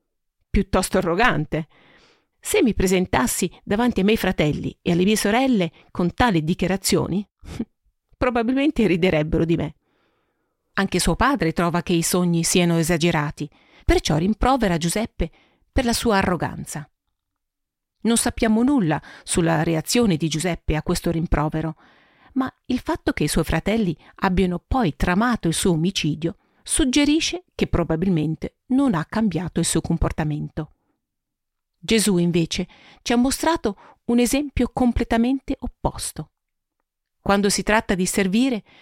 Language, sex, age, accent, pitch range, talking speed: Italian, female, 50-69, native, 170-240 Hz, 125 wpm